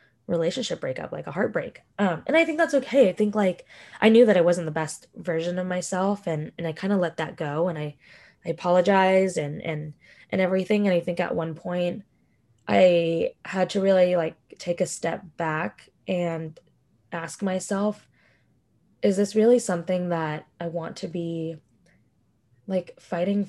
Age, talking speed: 20-39, 175 wpm